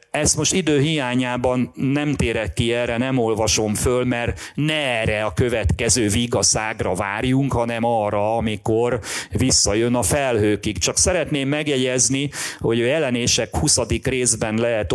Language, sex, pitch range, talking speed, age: Hungarian, male, 105-125 Hz, 135 wpm, 30-49